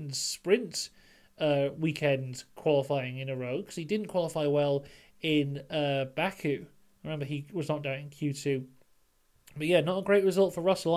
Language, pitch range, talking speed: English, 145-180 Hz, 165 wpm